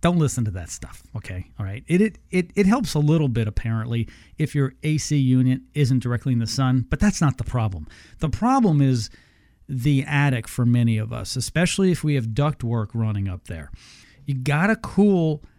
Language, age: English, 40-59